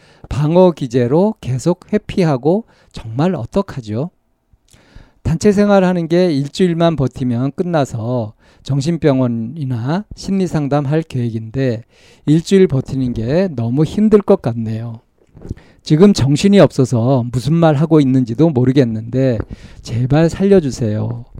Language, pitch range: Korean, 115-165 Hz